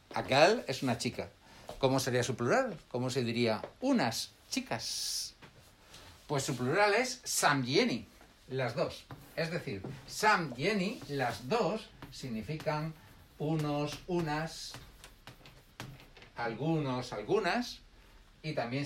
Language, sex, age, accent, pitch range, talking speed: Spanish, male, 60-79, Spanish, 130-185 Hz, 110 wpm